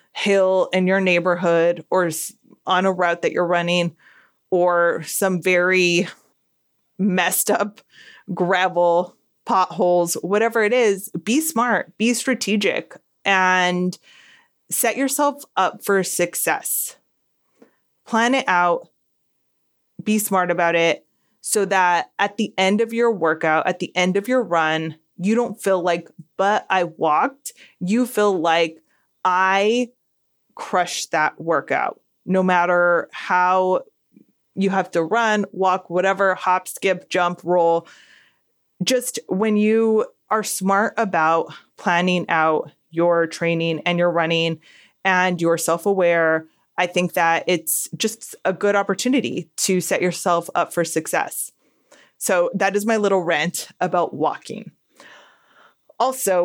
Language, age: English, 20-39